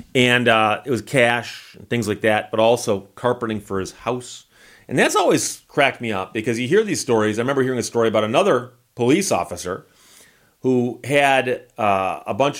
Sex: male